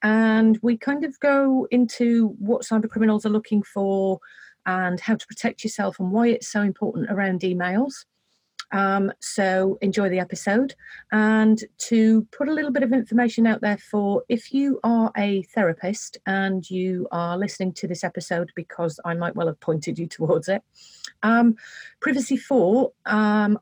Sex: female